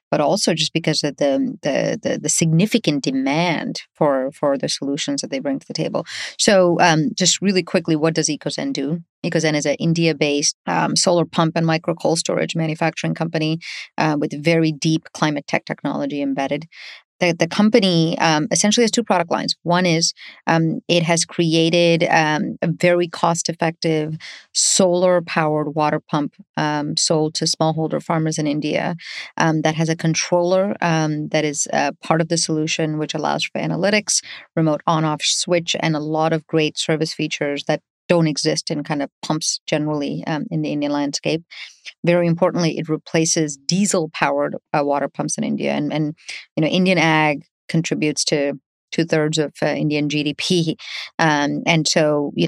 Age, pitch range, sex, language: 30-49, 150-170 Hz, female, English